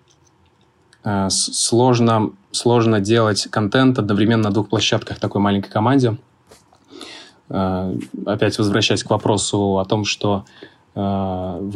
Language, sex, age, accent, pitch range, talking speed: Russian, male, 20-39, native, 100-120 Hz, 95 wpm